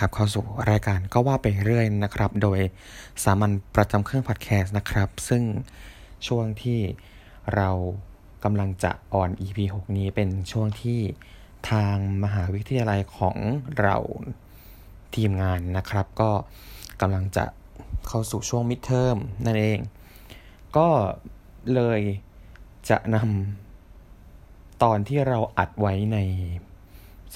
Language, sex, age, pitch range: Thai, male, 20-39, 95-115 Hz